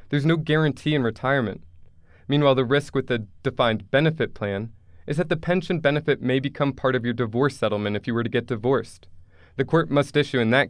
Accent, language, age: American, English, 20-39